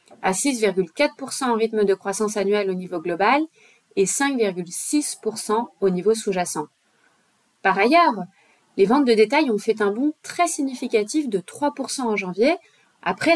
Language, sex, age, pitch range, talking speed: English, female, 30-49, 195-280 Hz, 145 wpm